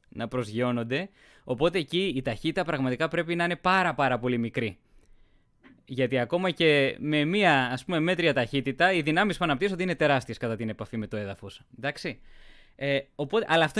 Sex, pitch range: male, 120-160 Hz